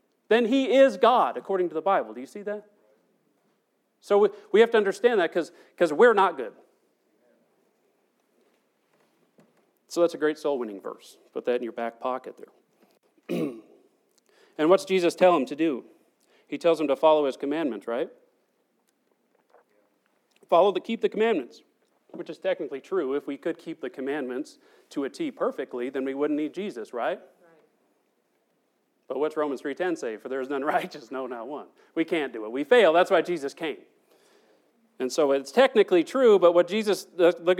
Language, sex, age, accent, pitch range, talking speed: English, male, 40-59, American, 145-215 Hz, 170 wpm